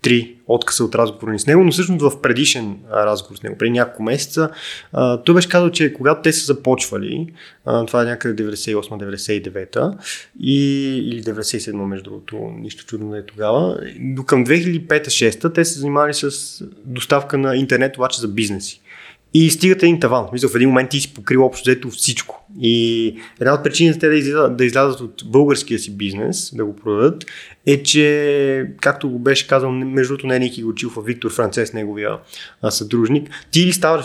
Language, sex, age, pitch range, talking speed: Bulgarian, male, 20-39, 110-140 Hz, 170 wpm